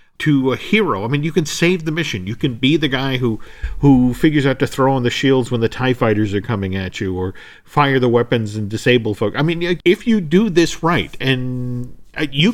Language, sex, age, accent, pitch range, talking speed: English, male, 50-69, American, 110-155 Hz, 230 wpm